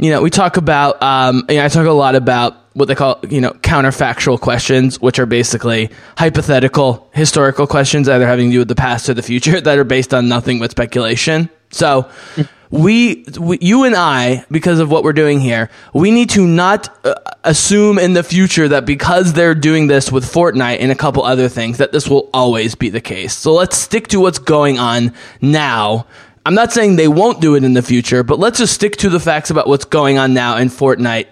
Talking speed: 215 wpm